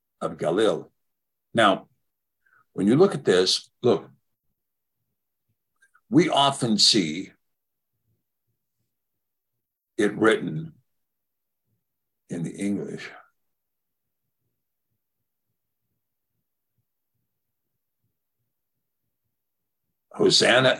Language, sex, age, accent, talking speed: English, male, 60-79, American, 50 wpm